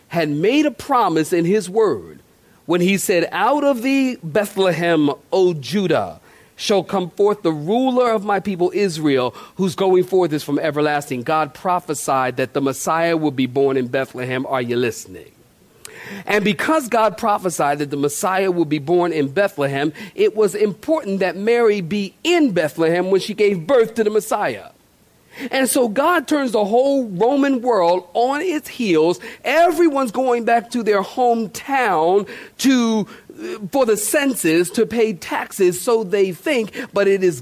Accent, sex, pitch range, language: American, male, 165-240 Hz, English